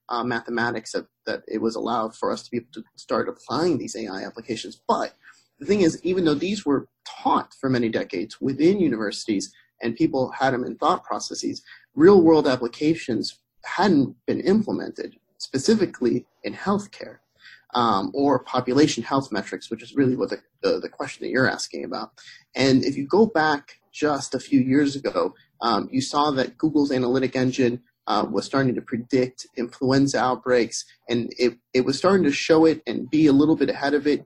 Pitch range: 125-150 Hz